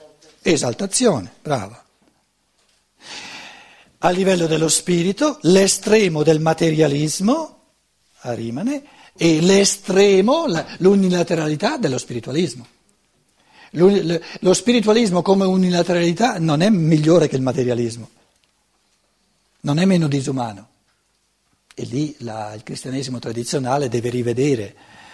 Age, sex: 60-79, male